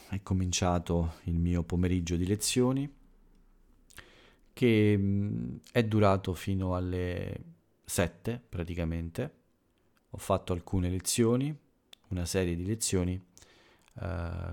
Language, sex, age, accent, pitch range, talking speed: Italian, male, 40-59, native, 85-100 Hz, 95 wpm